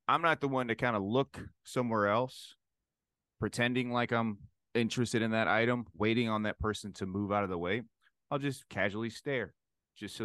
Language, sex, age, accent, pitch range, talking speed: English, male, 30-49, American, 100-125 Hz, 195 wpm